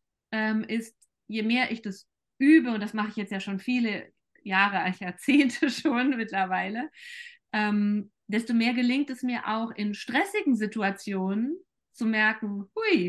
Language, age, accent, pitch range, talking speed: German, 20-39, German, 200-250 Hz, 140 wpm